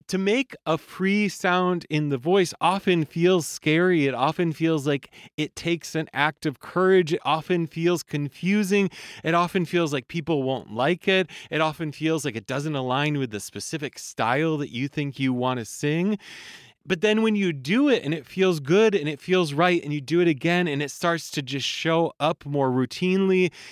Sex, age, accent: male, 30-49, American